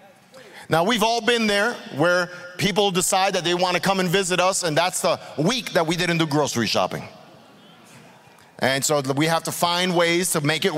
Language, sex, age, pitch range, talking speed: English, male, 40-59, 140-195 Hz, 200 wpm